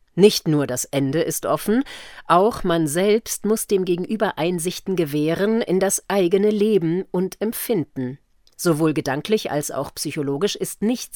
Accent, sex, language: German, female, German